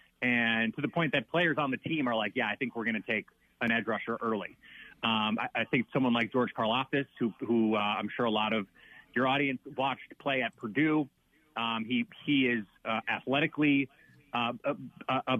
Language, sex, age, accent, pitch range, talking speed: English, male, 30-49, American, 120-155 Hz, 205 wpm